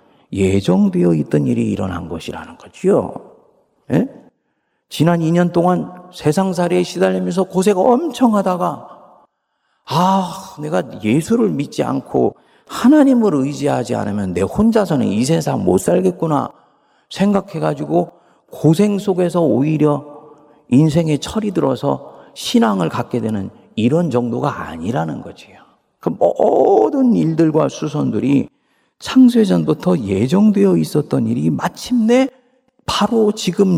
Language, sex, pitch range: Korean, male, 125-205 Hz